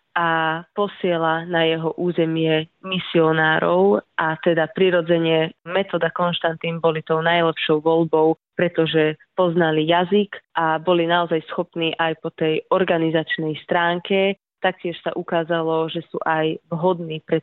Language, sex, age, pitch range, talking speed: Slovak, female, 20-39, 165-180 Hz, 120 wpm